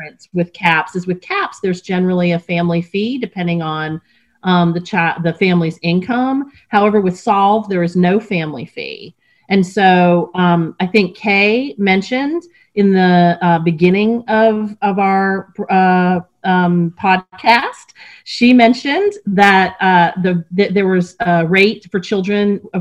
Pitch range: 175-210 Hz